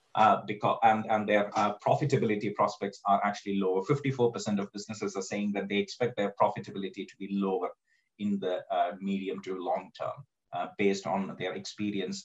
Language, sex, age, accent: English, male, 30-49, Indian